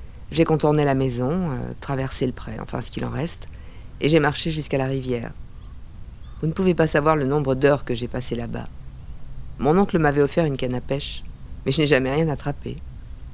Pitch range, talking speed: 115-160 Hz, 200 wpm